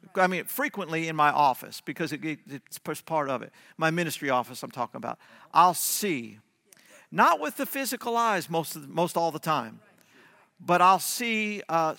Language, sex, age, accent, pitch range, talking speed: English, male, 50-69, American, 150-195 Hz, 185 wpm